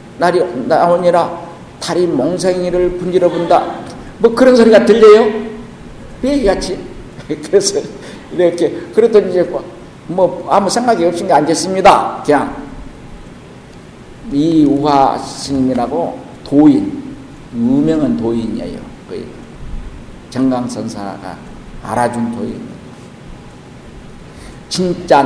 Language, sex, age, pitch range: Korean, male, 50-69, 125-190 Hz